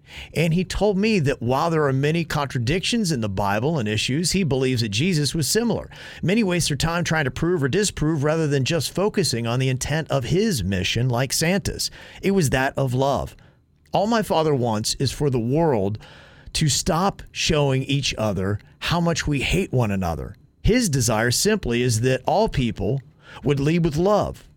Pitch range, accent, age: 120-165 Hz, American, 40-59